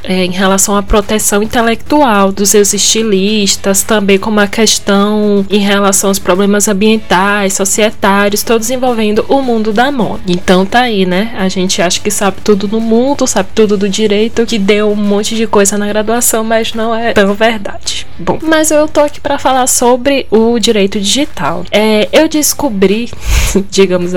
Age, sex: 10-29, female